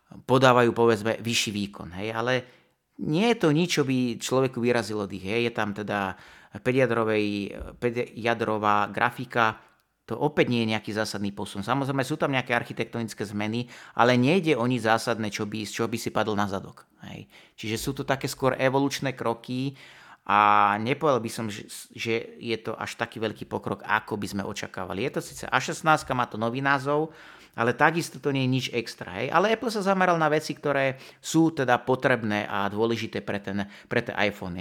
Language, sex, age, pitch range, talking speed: Slovak, male, 30-49, 105-130 Hz, 175 wpm